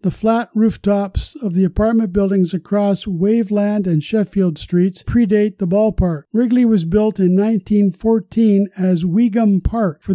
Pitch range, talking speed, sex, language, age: 180-210 Hz, 140 wpm, male, English, 50-69